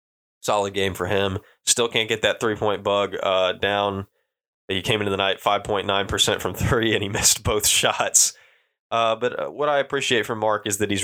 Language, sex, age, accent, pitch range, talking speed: English, male, 20-39, American, 95-115 Hz, 200 wpm